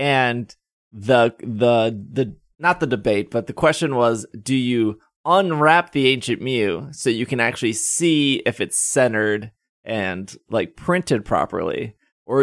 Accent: American